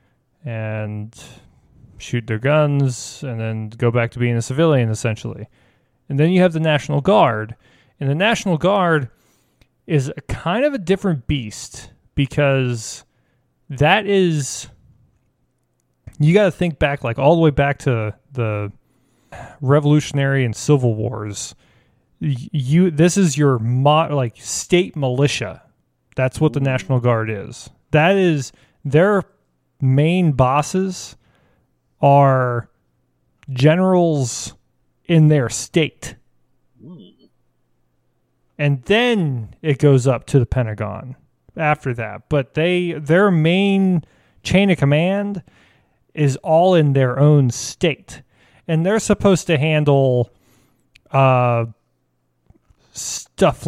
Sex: male